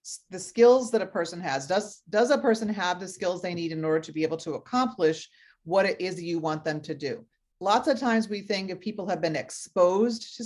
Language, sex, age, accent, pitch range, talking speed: English, female, 40-59, American, 160-215 Hz, 235 wpm